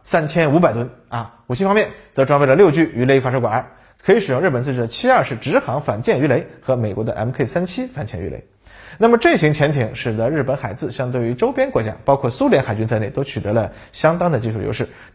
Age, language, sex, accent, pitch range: 20-39, Chinese, male, native, 115-160 Hz